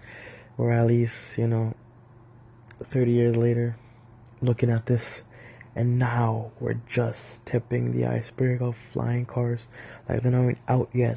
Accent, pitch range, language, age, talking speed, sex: American, 115-125 Hz, English, 20-39, 140 wpm, male